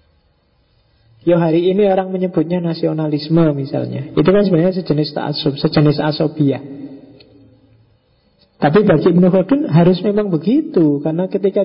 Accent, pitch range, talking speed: native, 145-185 Hz, 115 wpm